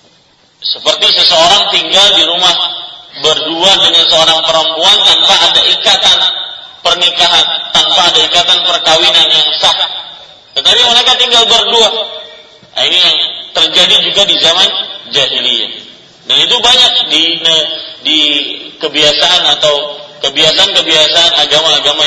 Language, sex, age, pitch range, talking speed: Malay, male, 40-59, 155-200 Hz, 110 wpm